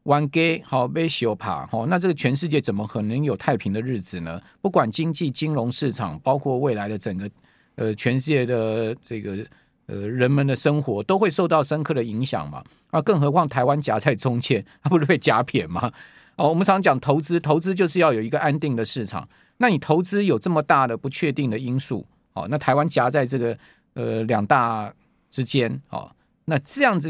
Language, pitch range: Chinese, 125-170 Hz